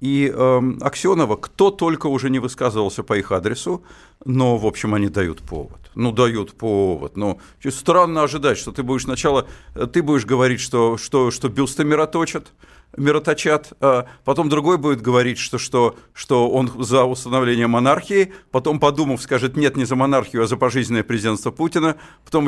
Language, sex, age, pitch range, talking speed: Russian, male, 50-69, 125-160 Hz, 165 wpm